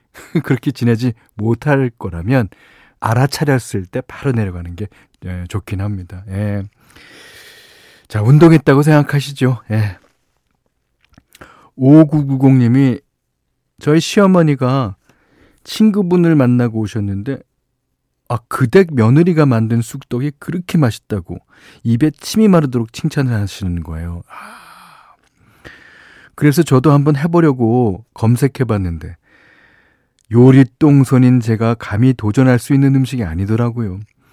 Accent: native